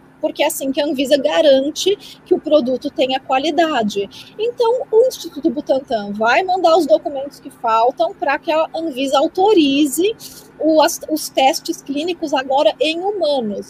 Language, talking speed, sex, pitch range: Portuguese, 145 wpm, female, 260-350 Hz